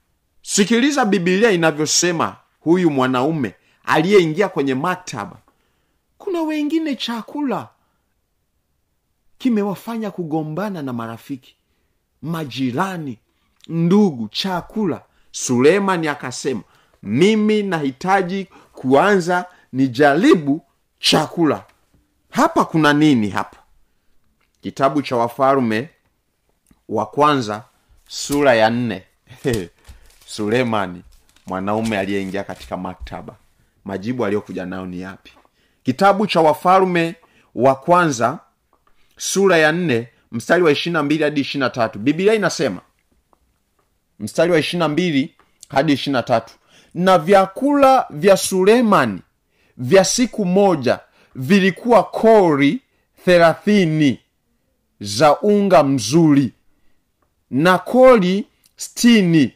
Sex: male